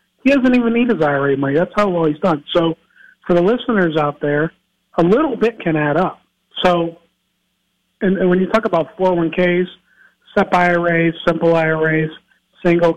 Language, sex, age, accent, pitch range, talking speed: English, male, 50-69, American, 160-190 Hz, 175 wpm